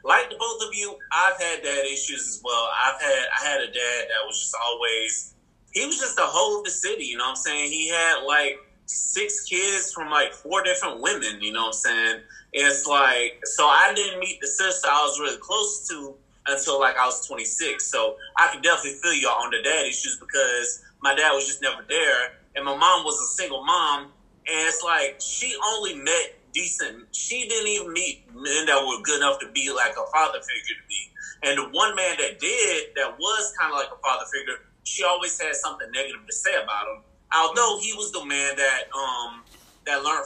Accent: American